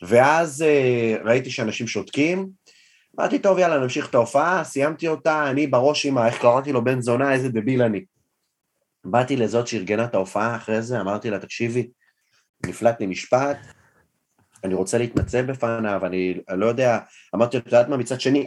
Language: Hebrew